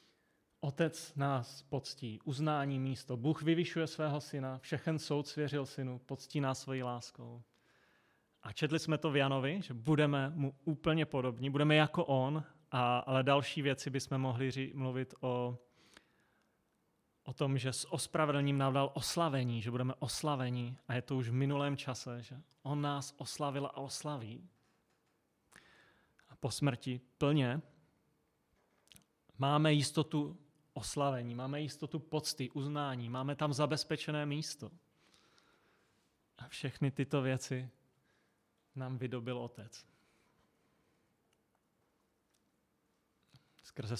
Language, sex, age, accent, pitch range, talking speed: Czech, male, 30-49, native, 130-150 Hz, 115 wpm